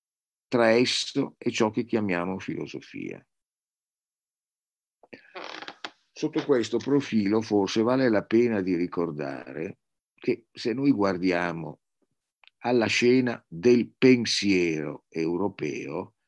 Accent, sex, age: native, male, 50-69